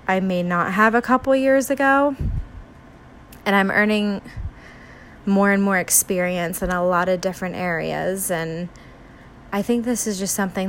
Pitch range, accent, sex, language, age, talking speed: 180-205 Hz, American, female, English, 20-39, 155 wpm